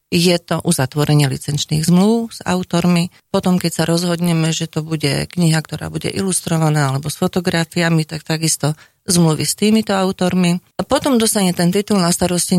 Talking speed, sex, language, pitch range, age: 160 wpm, female, Slovak, 155-180 Hz, 40-59